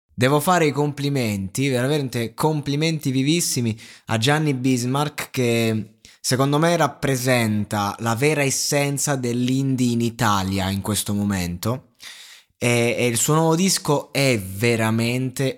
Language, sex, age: Italian, male, 20-39